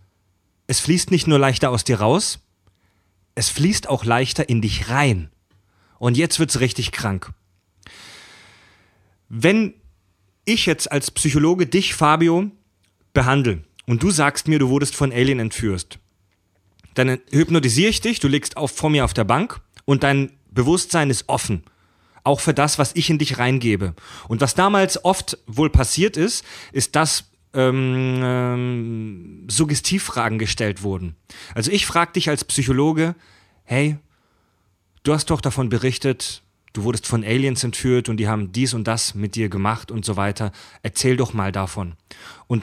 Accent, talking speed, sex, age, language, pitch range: German, 155 wpm, male, 30-49, German, 100-150 Hz